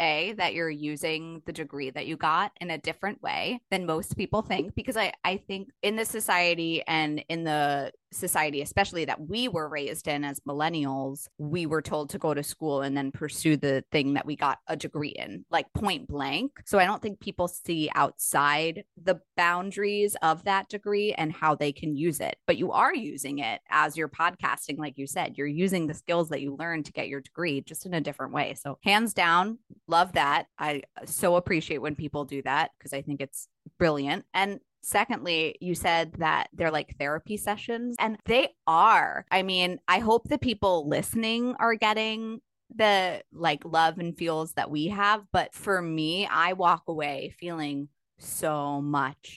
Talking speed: 190 wpm